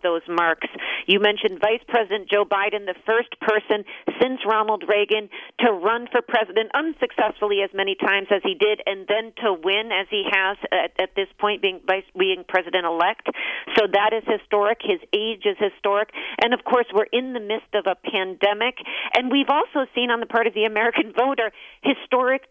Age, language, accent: 40-59, English, American